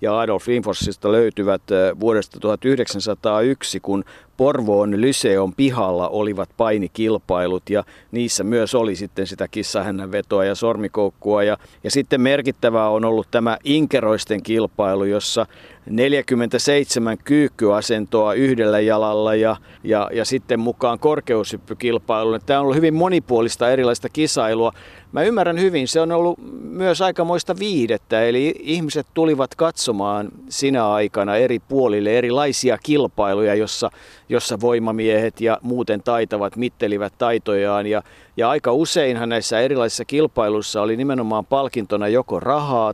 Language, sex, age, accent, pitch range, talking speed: Finnish, male, 50-69, native, 105-135 Hz, 120 wpm